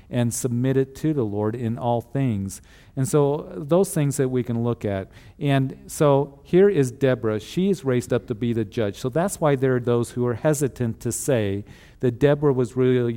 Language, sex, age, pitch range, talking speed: English, male, 50-69, 110-135 Hz, 210 wpm